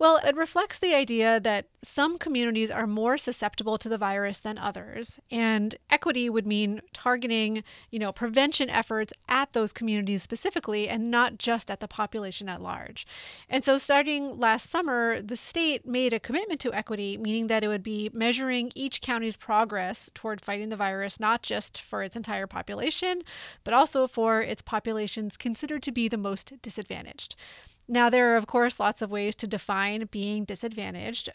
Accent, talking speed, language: American, 175 wpm, English